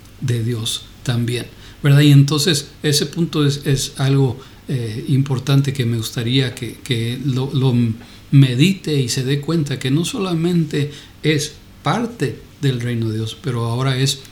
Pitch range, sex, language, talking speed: 115-150 Hz, male, Spanish, 155 wpm